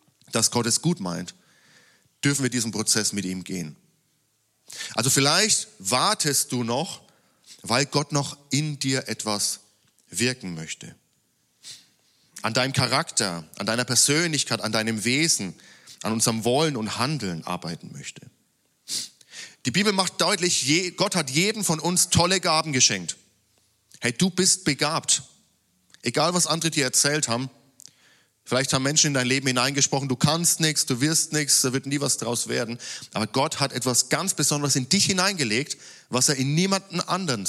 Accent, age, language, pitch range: German, 40-59, German, 120-155 Hz